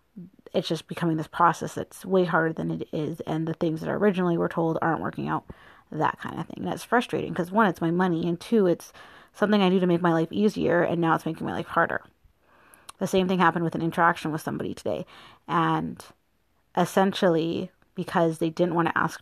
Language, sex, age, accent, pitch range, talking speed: English, female, 30-49, American, 165-190 Hz, 220 wpm